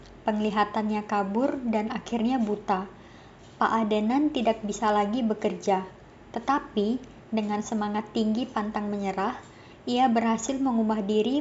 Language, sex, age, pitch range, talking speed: Indonesian, male, 20-39, 205-235 Hz, 110 wpm